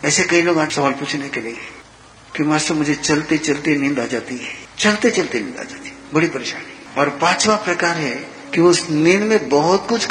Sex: male